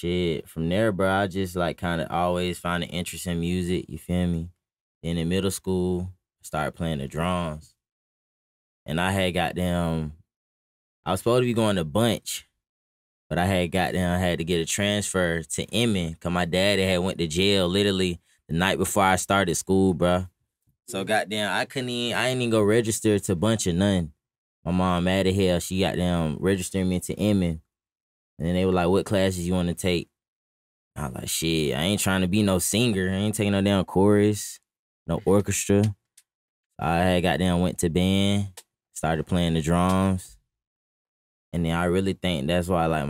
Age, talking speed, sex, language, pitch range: 20-39, 200 wpm, male, English, 85-95 Hz